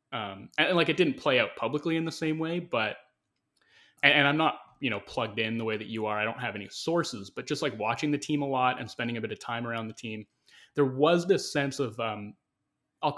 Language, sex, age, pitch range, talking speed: English, male, 20-39, 110-145 Hz, 245 wpm